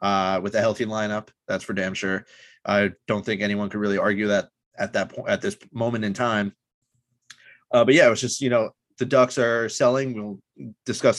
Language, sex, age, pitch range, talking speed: English, male, 20-39, 105-125 Hz, 210 wpm